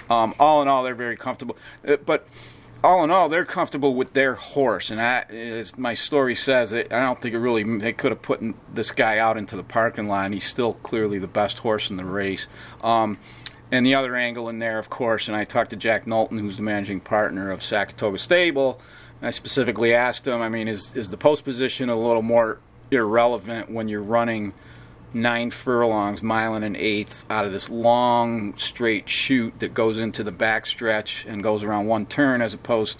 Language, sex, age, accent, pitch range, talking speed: English, male, 40-59, American, 110-120 Hz, 210 wpm